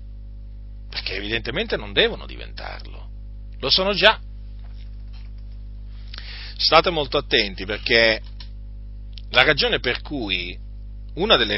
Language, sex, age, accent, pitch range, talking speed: Italian, male, 40-59, native, 100-125 Hz, 95 wpm